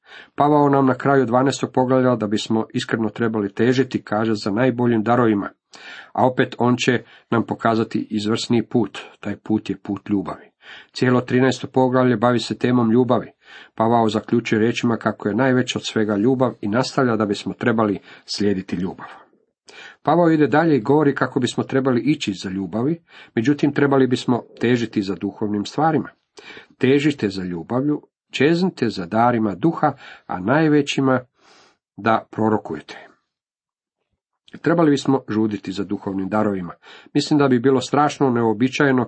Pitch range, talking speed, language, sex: 105-135 Hz, 140 wpm, Croatian, male